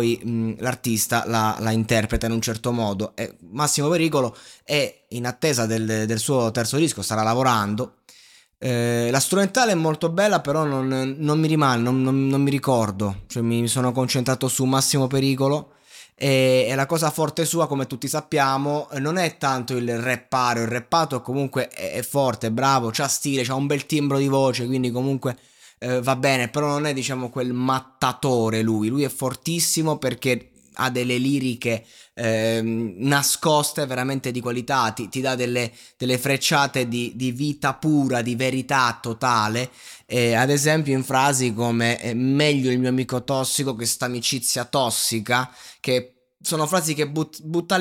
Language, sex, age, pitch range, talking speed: Italian, male, 20-39, 120-140 Hz, 160 wpm